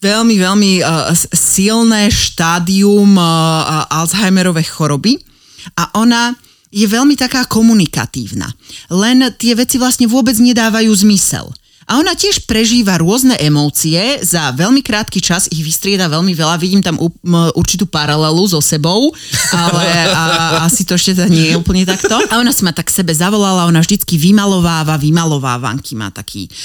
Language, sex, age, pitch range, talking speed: Slovak, female, 30-49, 150-200 Hz, 150 wpm